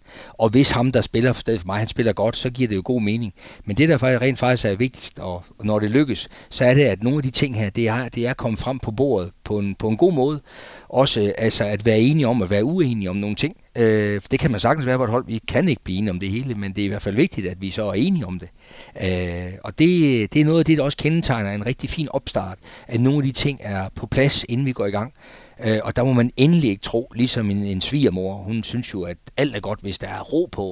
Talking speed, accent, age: 285 wpm, native, 40-59